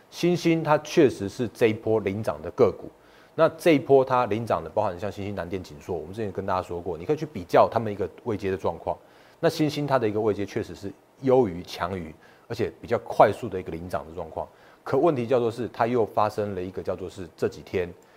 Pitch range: 95-135 Hz